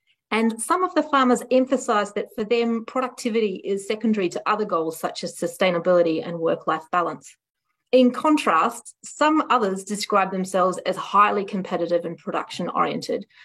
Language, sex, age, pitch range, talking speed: English, female, 30-49, 170-220 Hz, 145 wpm